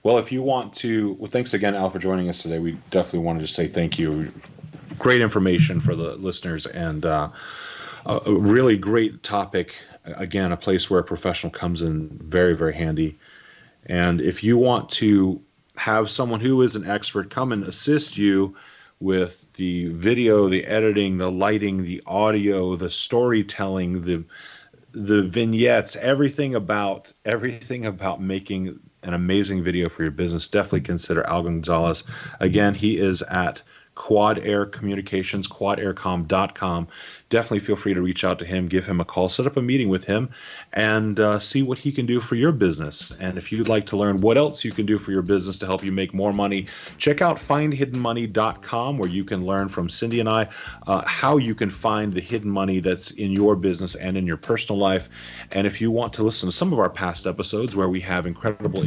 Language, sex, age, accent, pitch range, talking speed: English, male, 30-49, American, 90-115 Hz, 190 wpm